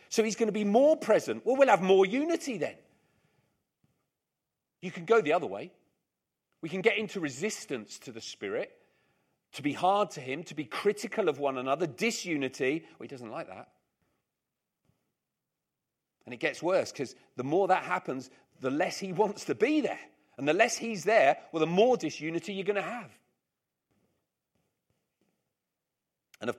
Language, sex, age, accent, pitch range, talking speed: English, male, 40-59, British, 145-220 Hz, 170 wpm